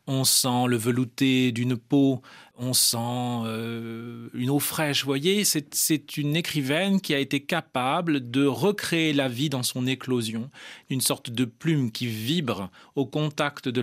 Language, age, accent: French, 40-59, French